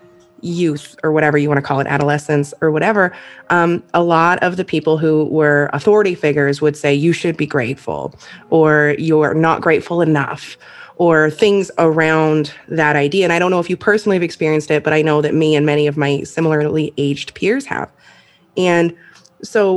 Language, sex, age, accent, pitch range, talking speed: English, female, 20-39, American, 155-190 Hz, 190 wpm